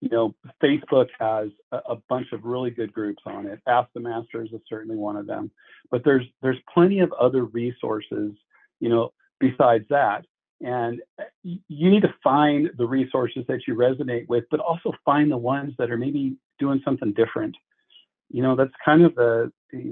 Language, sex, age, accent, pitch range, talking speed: English, male, 50-69, American, 115-145 Hz, 180 wpm